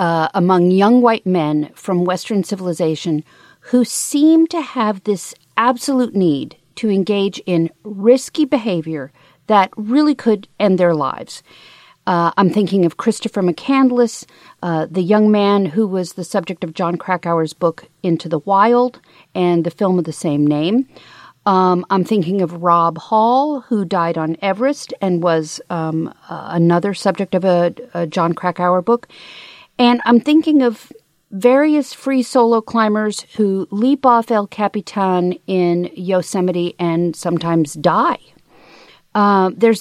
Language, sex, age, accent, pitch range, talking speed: English, female, 50-69, American, 170-225 Hz, 145 wpm